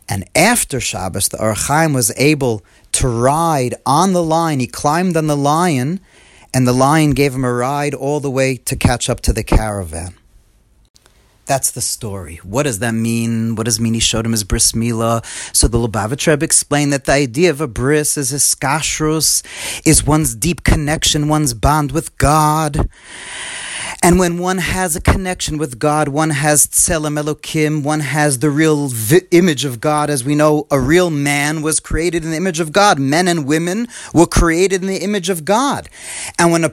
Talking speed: 190 wpm